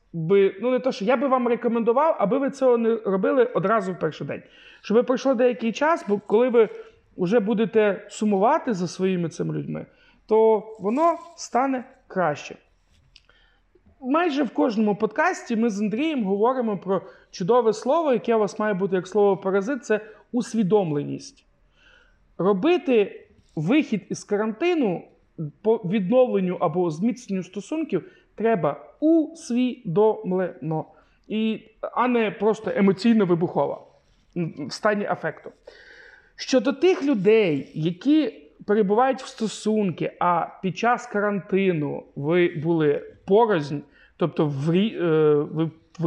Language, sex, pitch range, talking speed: Ukrainian, male, 185-250 Hz, 120 wpm